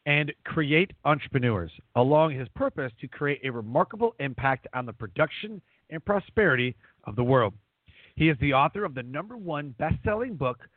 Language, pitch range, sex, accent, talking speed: English, 120-165 Hz, male, American, 160 wpm